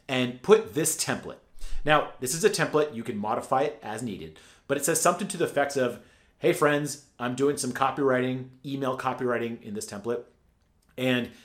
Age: 30-49